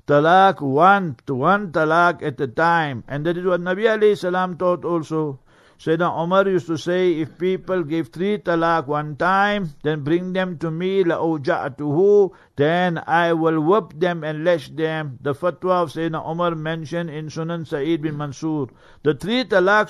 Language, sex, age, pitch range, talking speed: English, male, 60-79, 160-185 Hz, 170 wpm